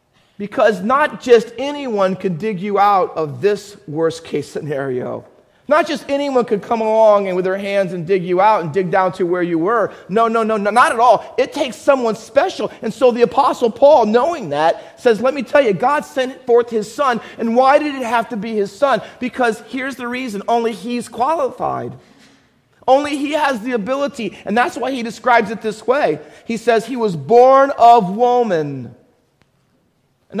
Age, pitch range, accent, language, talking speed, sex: 40-59, 210-255 Hz, American, English, 195 wpm, male